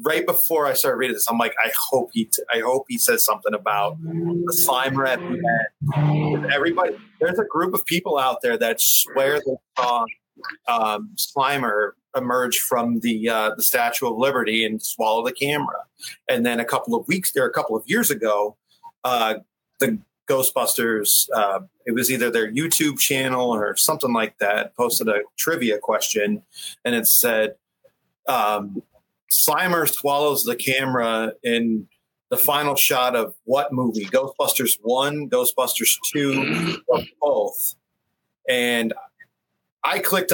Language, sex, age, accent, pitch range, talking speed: English, male, 30-49, American, 120-175 Hz, 150 wpm